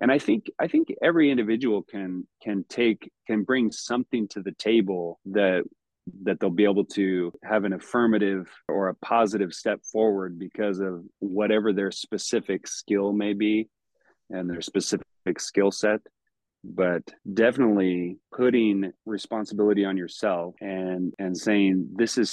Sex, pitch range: male, 95-110 Hz